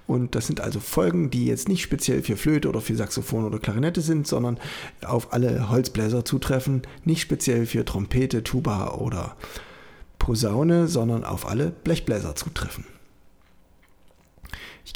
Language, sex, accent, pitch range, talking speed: German, male, German, 105-145 Hz, 140 wpm